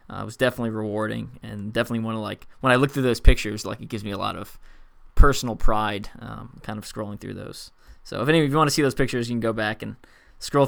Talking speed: 265 wpm